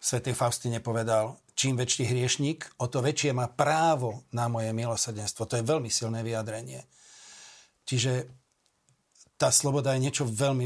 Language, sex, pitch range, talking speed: Slovak, male, 120-135 Hz, 140 wpm